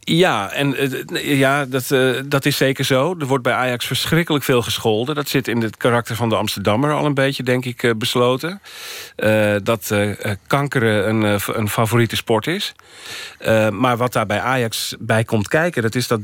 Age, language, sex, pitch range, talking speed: 40-59, Dutch, male, 105-125 Hz, 190 wpm